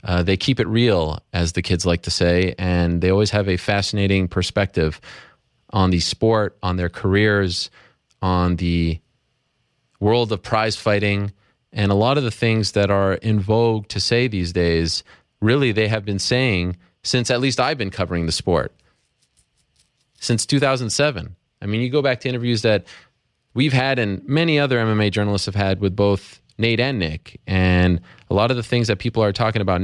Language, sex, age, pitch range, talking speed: English, male, 30-49, 95-115 Hz, 185 wpm